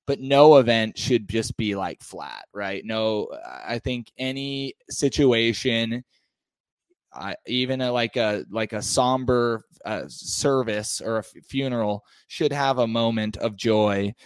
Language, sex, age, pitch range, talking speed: English, male, 20-39, 105-125 Hz, 145 wpm